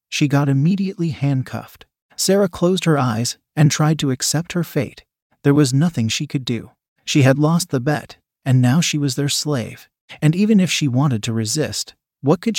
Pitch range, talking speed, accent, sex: 130-155 Hz, 190 wpm, American, male